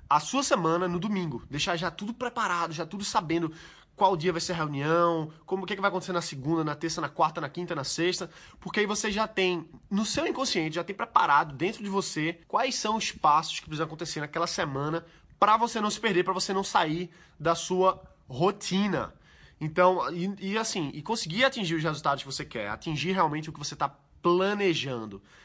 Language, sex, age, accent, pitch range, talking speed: Portuguese, male, 20-39, Brazilian, 160-200 Hz, 205 wpm